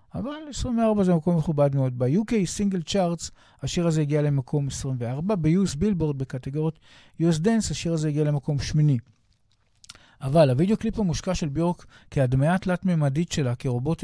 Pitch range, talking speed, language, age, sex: 135-170 Hz, 145 wpm, Hebrew, 50-69, male